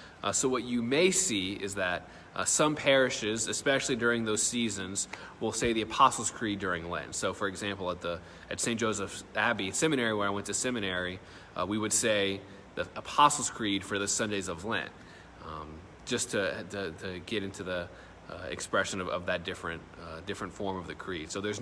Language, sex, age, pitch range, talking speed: English, male, 30-49, 90-110 Hz, 195 wpm